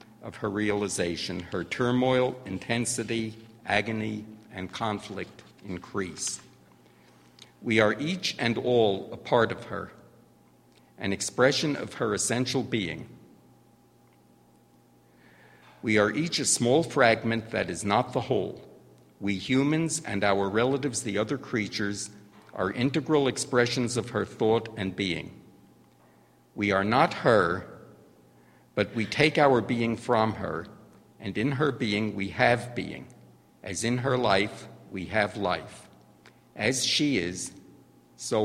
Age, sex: 60-79, male